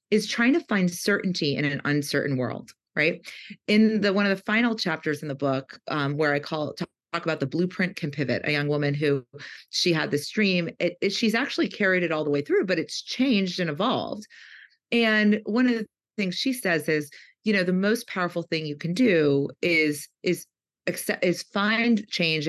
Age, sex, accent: 30-49, female, American